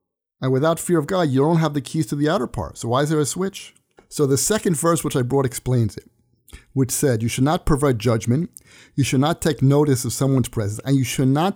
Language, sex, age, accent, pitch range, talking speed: English, male, 50-69, American, 120-160 Hz, 250 wpm